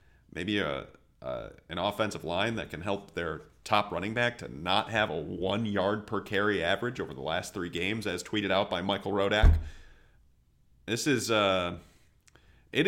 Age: 30-49